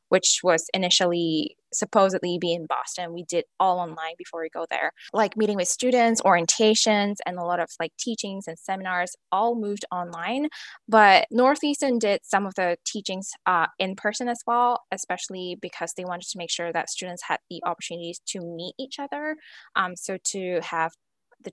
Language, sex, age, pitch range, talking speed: English, female, 10-29, 180-225 Hz, 180 wpm